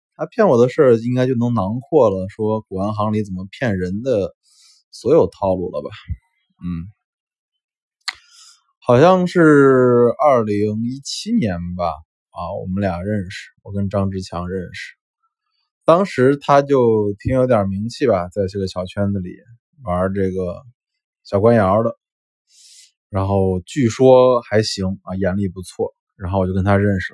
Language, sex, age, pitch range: Chinese, male, 20-39, 95-150 Hz